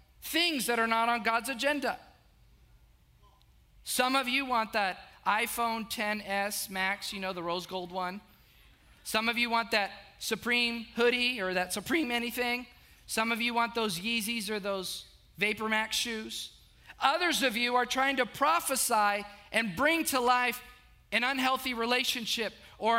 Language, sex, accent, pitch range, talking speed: English, male, American, 210-255 Hz, 150 wpm